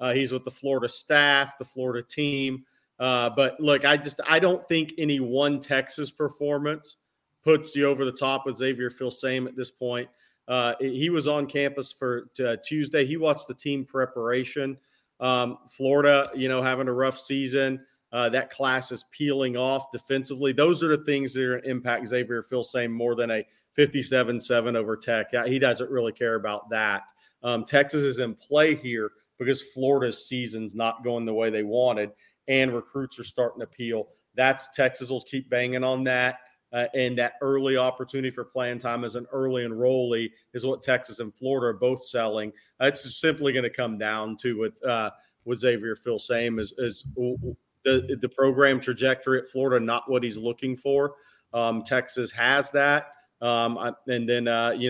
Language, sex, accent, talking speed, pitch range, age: English, male, American, 180 wpm, 120-135 Hz, 40-59